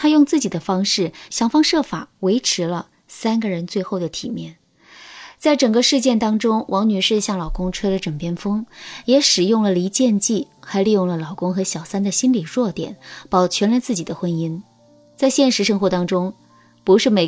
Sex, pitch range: female, 170-230 Hz